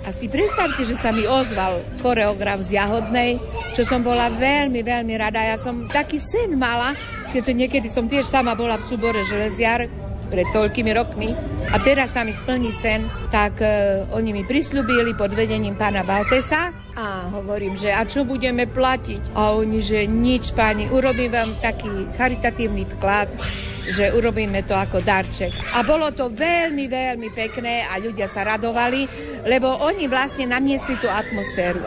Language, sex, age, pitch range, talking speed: Slovak, female, 50-69, 200-250 Hz, 160 wpm